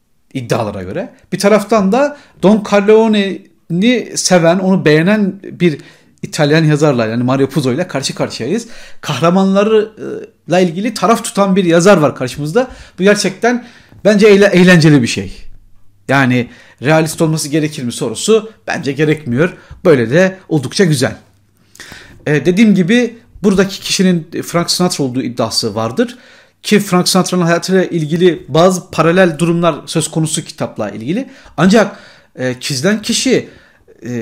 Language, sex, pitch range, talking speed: Turkish, male, 130-205 Hz, 125 wpm